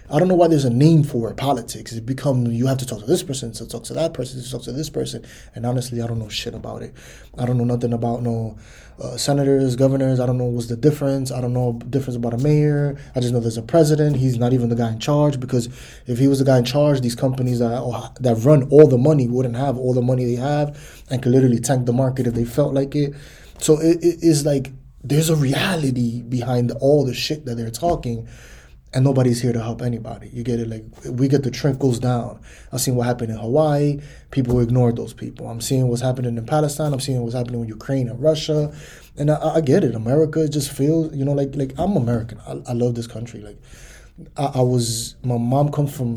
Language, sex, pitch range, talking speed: English, male, 120-140 Hz, 245 wpm